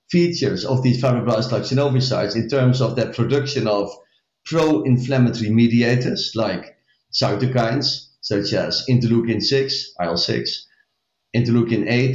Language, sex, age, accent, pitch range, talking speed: English, male, 50-69, Dutch, 115-140 Hz, 100 wpm